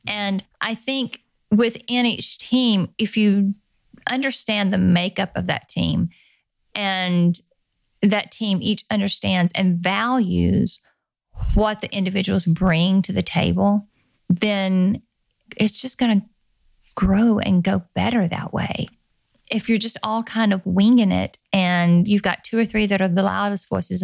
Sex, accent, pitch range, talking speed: female, American, 190-225 Hz, 145 wpm